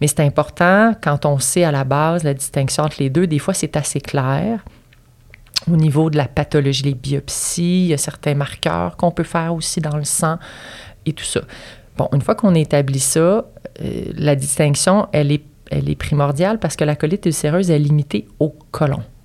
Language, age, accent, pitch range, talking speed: French, 30-49, Canadian, 135-160 Hz, 195 wpm